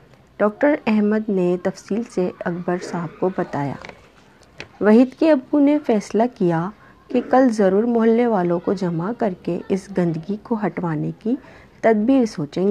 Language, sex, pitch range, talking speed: Urdu, female, 175-230 Hz, 145 wpm